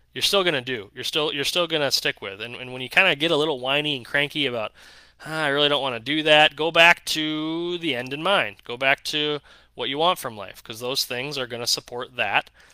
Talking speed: 260 wpm